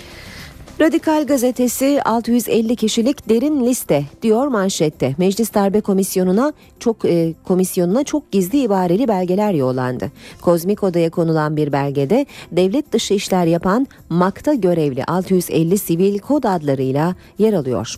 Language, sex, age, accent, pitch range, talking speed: Turkish, female, 40-59, native, 160-230 Hz, 120 wpm